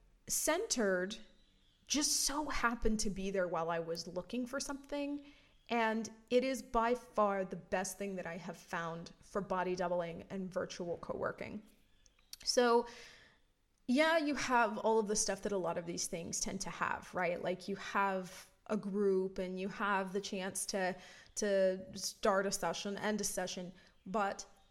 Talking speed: 165 wpm